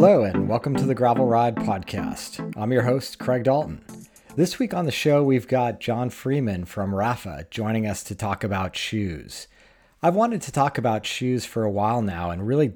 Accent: American